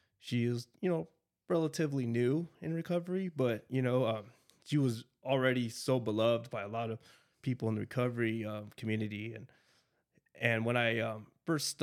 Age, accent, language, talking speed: 20-39, American, English, 165 wpm